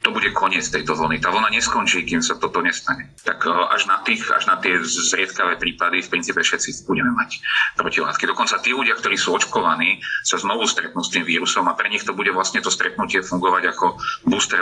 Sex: male